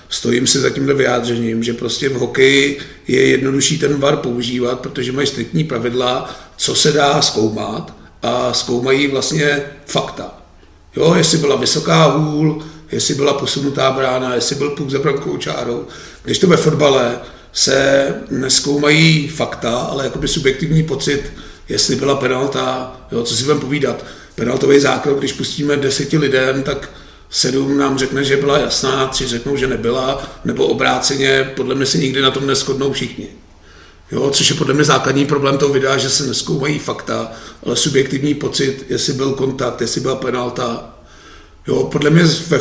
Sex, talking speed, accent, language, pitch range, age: male, 160 wpm, native, Czech, 130-145 Hz, 40-59